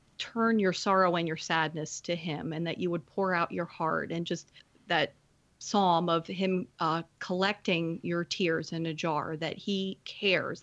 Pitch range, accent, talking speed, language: 170-200 Hz, American, 180 wpm, English